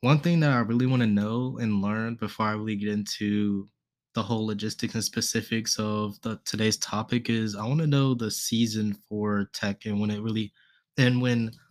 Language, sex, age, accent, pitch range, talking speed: English, male, 20-39, American, 110-130 Hz, 200 wpm